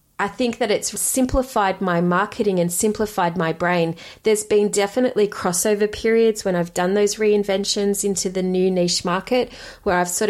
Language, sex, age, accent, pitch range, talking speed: English, female, 30-49, Australian, 185-230 Hz, 170 wpm